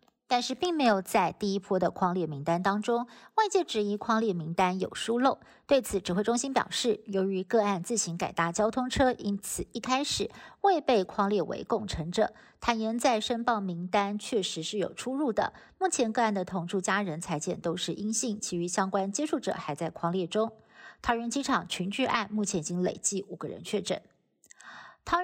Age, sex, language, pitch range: 50-69, female, Chinese, 185-240 Hz